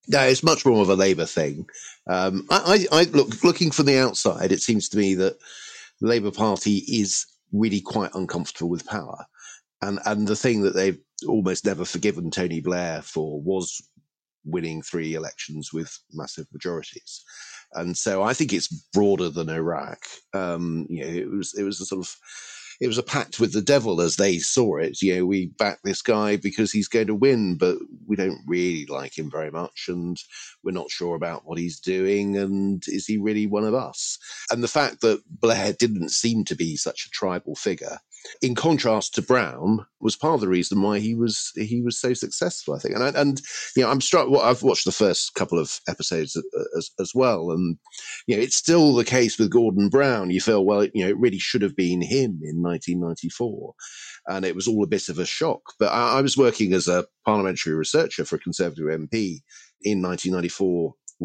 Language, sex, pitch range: English, male, 90-115 Hz